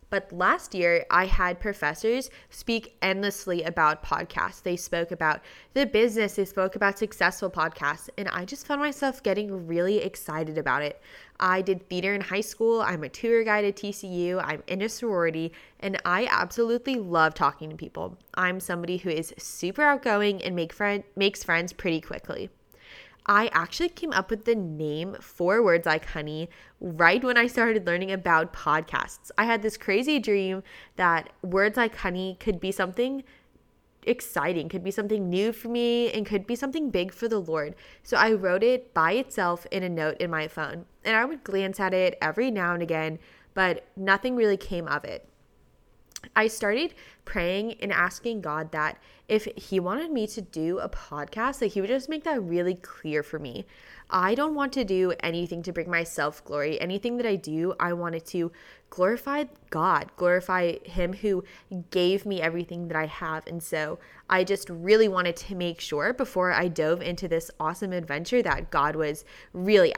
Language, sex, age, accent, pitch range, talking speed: English, female, 20-39, American, 170-220 Hz, 180 wpm